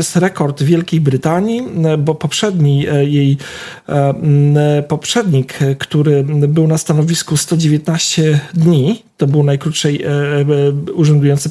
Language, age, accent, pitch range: Polish, 40-59, native, 150-175 Hz